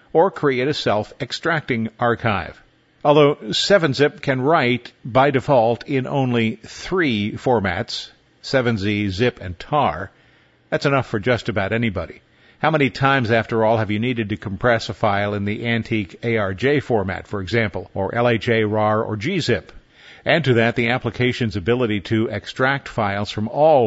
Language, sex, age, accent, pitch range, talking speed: English, male, 50-69, American, 105-135 Hz, 150 wpm